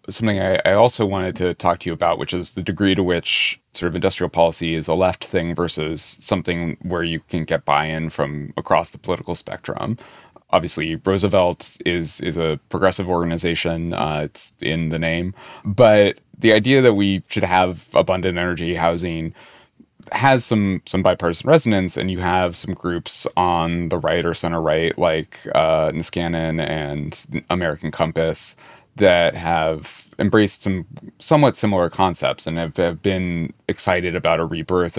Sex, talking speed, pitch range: male, 160 wpm, 80-95 Hz